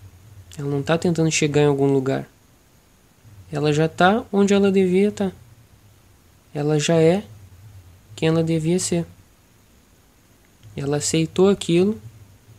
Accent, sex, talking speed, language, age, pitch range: Brazilian, male, 120 wpm, Portuguese, 20-39, 110-165 Hz